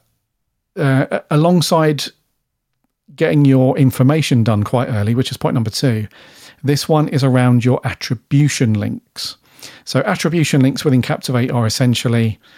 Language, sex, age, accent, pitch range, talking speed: English, male, 40-59, British, 115-140 Hz, 130 wpm